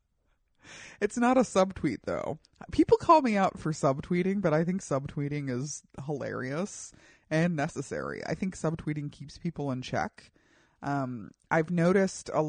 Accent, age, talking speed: American, 30-49, 145 wpm